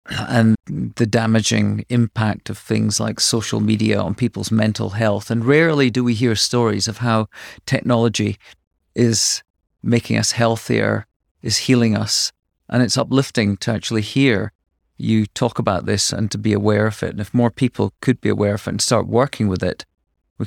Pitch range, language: 105-120 Hz, English